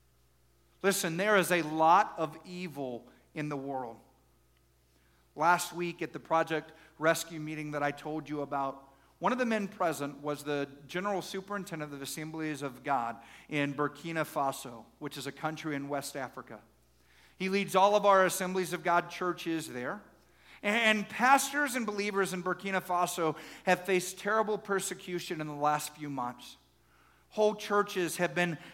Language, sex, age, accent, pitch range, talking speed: English, male, 50-69, American, 140-180 Hz, 155 wpm